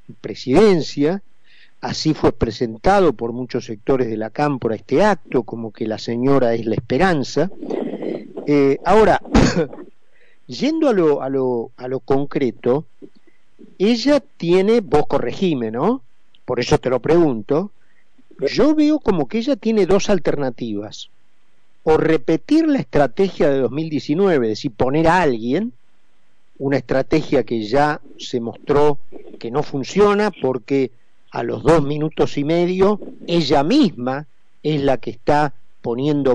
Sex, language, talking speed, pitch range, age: male, Spanish, 135 wpm, 130-195 Hz, 50-69